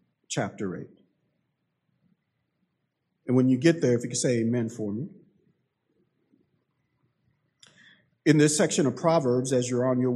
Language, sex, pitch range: English, male, 130-190 Hz